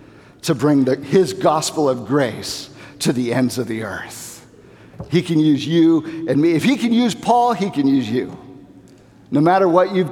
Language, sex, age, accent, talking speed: English, male, 50-69, American, 185 wpm